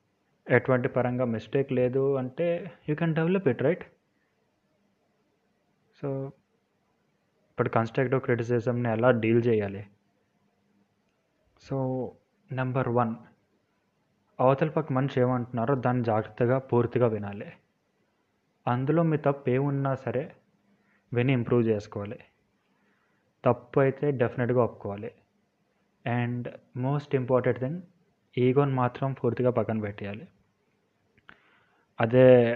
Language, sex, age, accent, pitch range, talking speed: Telugu, male, 20-39, native, 115-135 Hz, 90 wpm